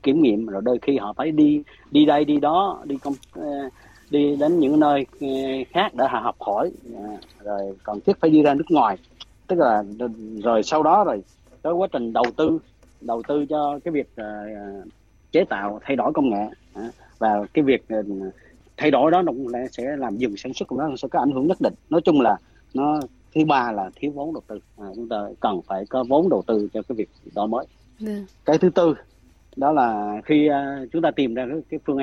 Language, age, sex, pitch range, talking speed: Vietnamese, 30-49, male, 105-145 Hz, 205 wpm